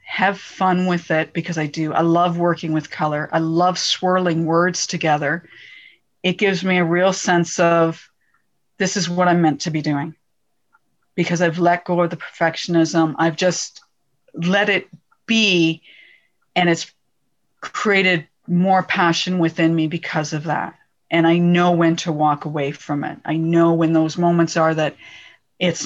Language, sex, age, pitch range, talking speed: English, female, 40-59, 165-185 Hz, 165 wpm